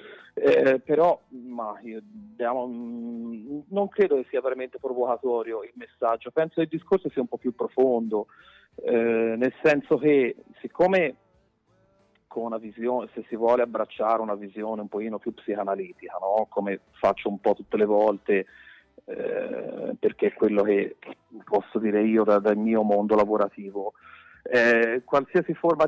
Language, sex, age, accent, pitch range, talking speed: Italian, male, 30-49, native, 110-150 Hz, 150 wpm